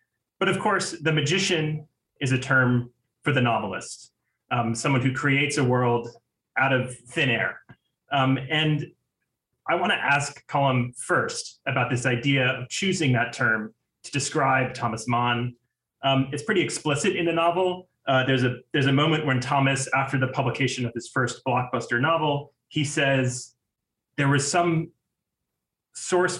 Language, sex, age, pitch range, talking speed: English, male, 30-49, 120-145 Hz, 155 wpm